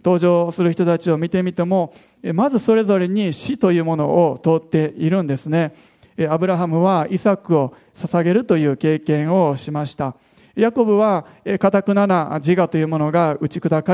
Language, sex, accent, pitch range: Japanese, male, native, 150-195 Hz